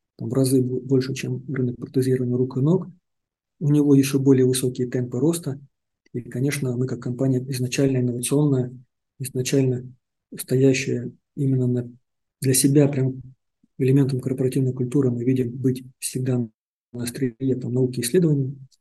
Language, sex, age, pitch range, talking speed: Russian, male, 50-69, 125-140 Hz, 135 wpm